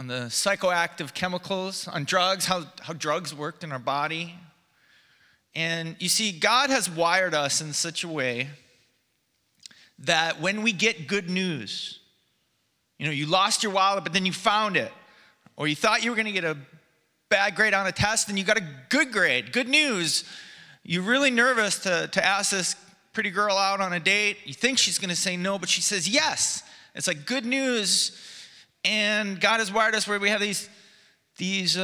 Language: English